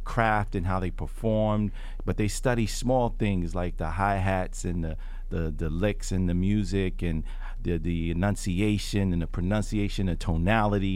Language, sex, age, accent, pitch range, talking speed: English, male, 40-59, American, 90-115 Hz, 165 wpm